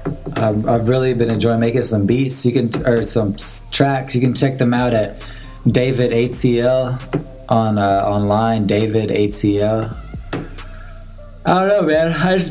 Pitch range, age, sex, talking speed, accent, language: 105-135 Hz, 20-39, male, 150 wpm, American, English